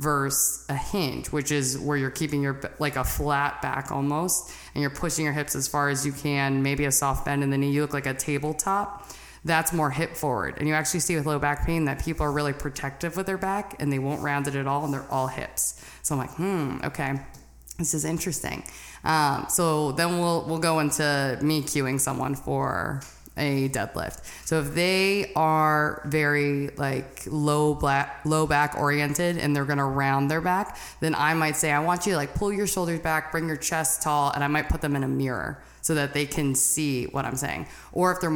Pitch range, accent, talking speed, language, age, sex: 140-160 Hz, American, 220 wpm, English, 20-39, female